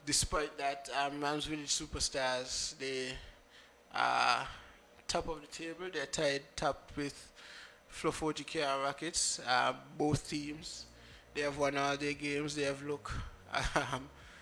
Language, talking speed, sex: English, 140 wpm, male